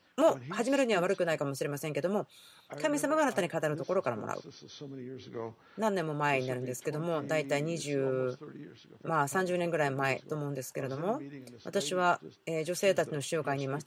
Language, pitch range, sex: Japanese, 145-210 Hz, female